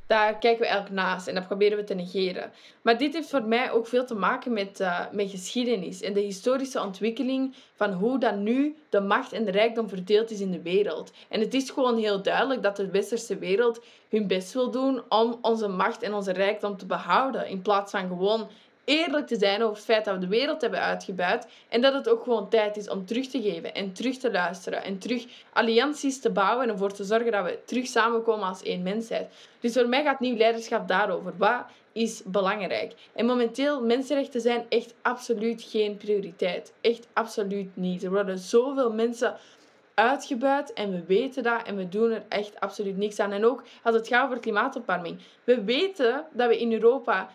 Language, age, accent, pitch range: Dutch, 20-39, Dutch, 200-245 Hz